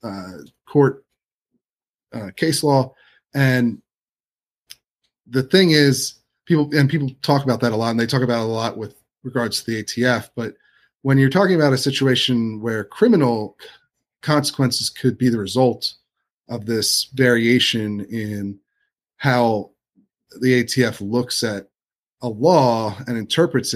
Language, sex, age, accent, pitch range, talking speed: English, male, 30-49, American, 110-135 Hz, 140 wpm